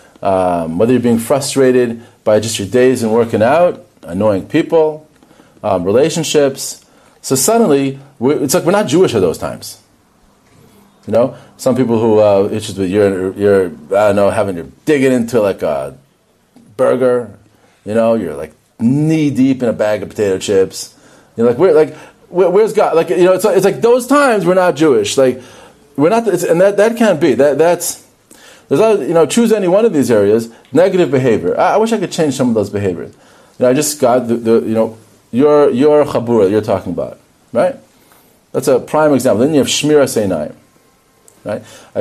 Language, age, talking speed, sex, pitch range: English, 40-59, 195 wpm, male, 115-170 Hz